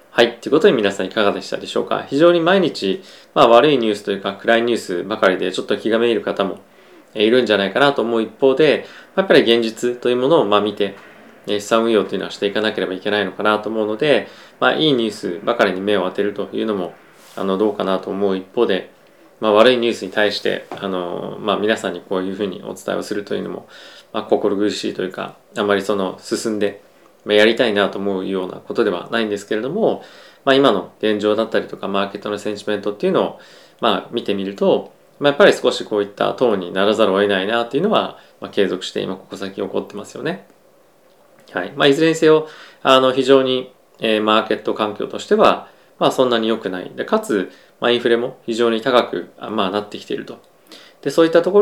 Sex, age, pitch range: male, 20-39, 100-125 Hz